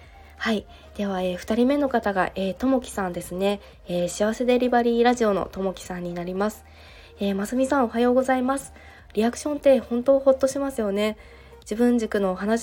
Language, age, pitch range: Japanese, 20-39, 200-240 Hz